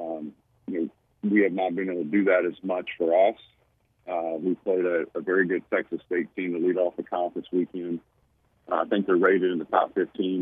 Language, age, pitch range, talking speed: English, 50-69, 90-105 Hz, 230 wpm